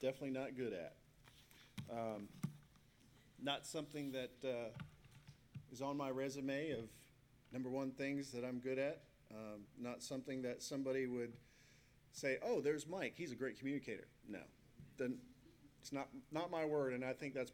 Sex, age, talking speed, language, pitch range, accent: male, 40-59, 155 wpm, English, 125-150 Hz, American